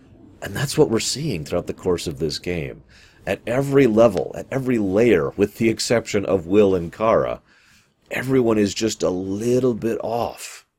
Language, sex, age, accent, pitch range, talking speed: English, male, 40-59, American, 85-125 Hz, 170 wpm